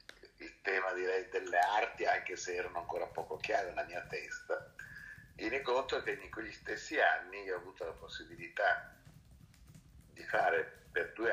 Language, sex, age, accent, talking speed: Italian, male, 50-69, native, 165 wpm